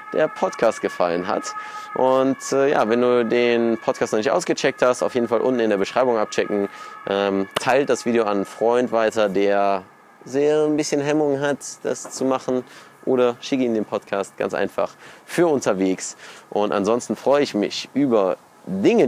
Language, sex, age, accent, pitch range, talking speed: German, male, 20-39, German, 105-145 Hz, 175 wpm